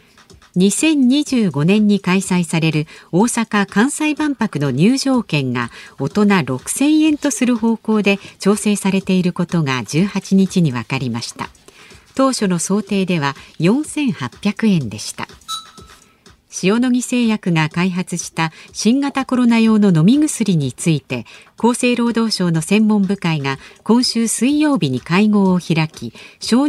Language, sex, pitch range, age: Japanese, female, 160-235 Hz, 50-69